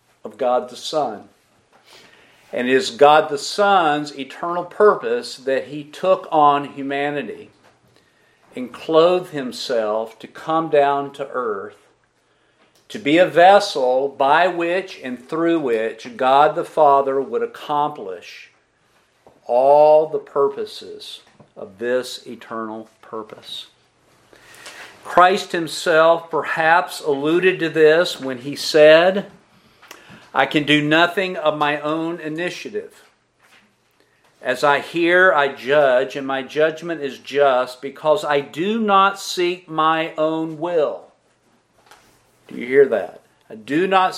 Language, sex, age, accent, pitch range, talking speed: English, male, 50-69, American, 145-180 Hz, 120 wpm